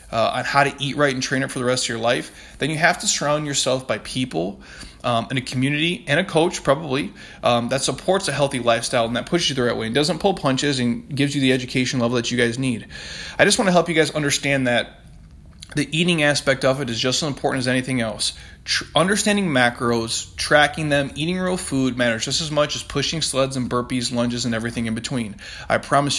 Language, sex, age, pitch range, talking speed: English, male, 20-39, 120-155 Hz, 235 wpm